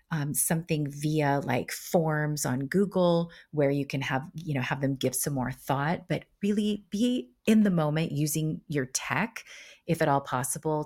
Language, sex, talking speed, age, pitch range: English, female, 175 wpm, 30-49, 140-175 Hz